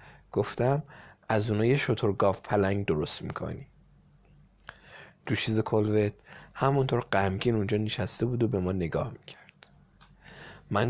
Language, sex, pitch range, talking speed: Persian, male, 105-130 Hz, 115 wpm